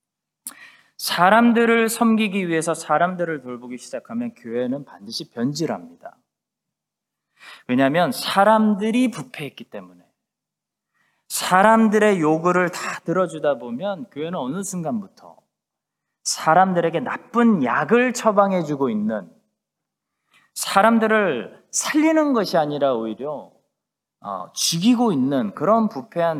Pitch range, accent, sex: 145-225 Hz, native, male